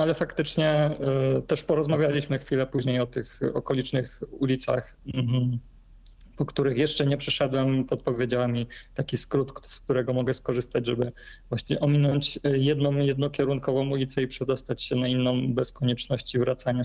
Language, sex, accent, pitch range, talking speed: Polish, male, native, 120-145 Hz, 130 wpm